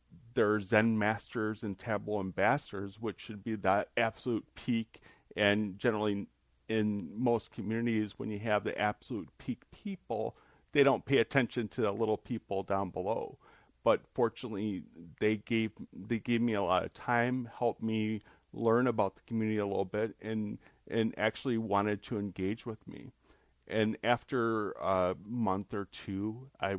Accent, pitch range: American, 105-120 Hz